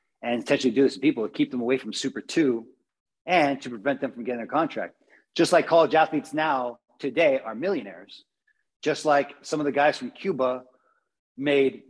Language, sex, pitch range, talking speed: English, male, 130-160 Hz, 190 wpm